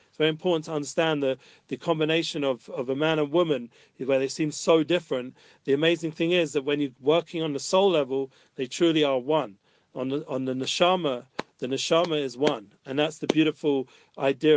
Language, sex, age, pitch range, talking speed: English, male, 40-59, 140-160 Hz, 200 wpm